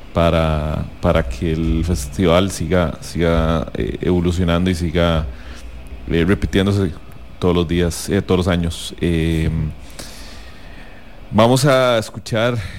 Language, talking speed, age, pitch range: English, 115 wpm, 30-49, 85-100 Hz